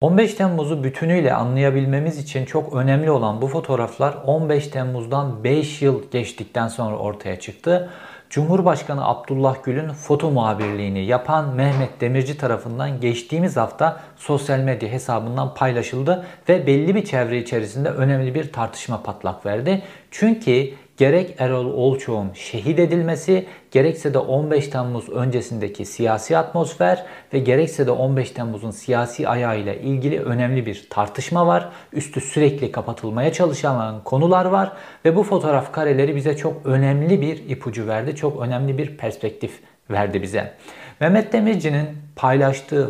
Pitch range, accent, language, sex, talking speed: 120-155 Hz, native, Turkish, male, 130 wpm